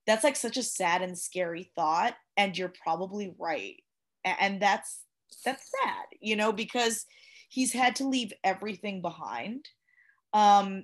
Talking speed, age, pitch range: 145 wpm, 20-39, 185-250 Hz